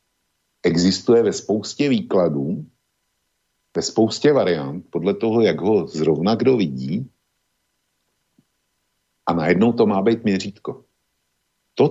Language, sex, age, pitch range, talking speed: Slovak, male, 50-69, 85-115 Hz, 105 wpm